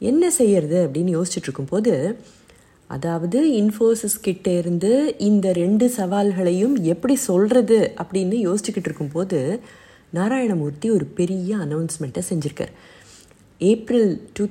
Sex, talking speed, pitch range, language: female, 95 wpm, 165-220 Hz, Tamil